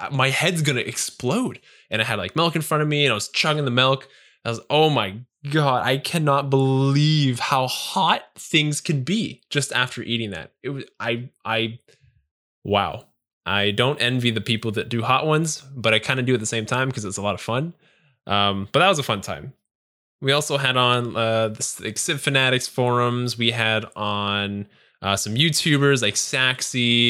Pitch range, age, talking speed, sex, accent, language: 110-135 Hz, 10-29, 200 wpm, male, American, English